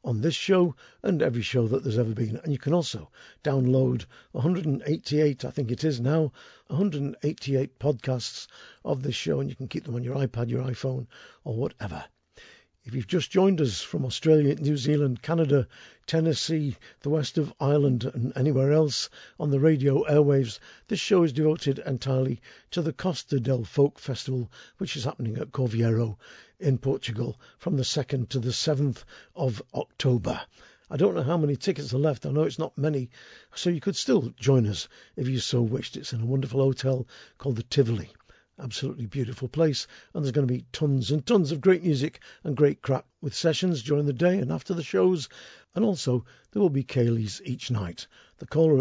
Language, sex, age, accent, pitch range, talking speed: English, male, 50-69, British, 125-155 Hz, 190 wpm